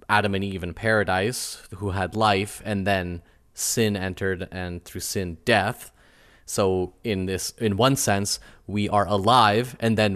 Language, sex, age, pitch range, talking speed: English, male, 20-39, 90-110 Hz, 160 wpm